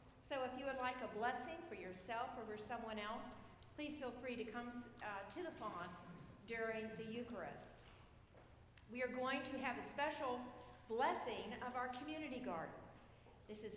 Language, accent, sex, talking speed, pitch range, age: English, American, female, 170 wpm, 225-265 Hz, 50-69